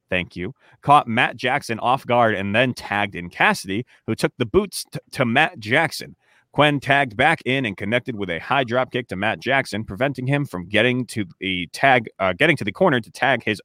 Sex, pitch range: male, 110-140 Hz